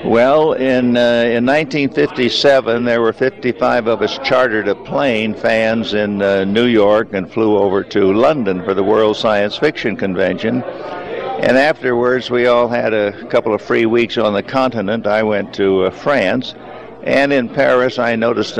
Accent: American